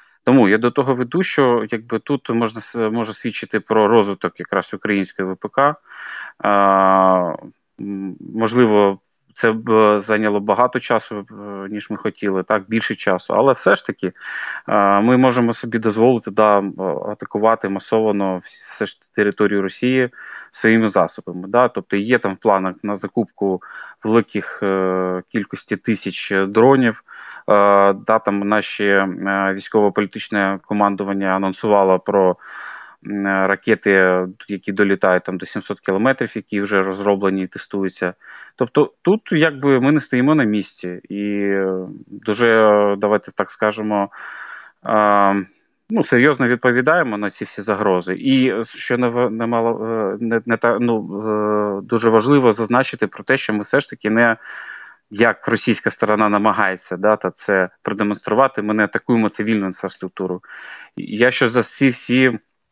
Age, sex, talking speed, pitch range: 20-39, male, 120 wpm, 100-115 Hz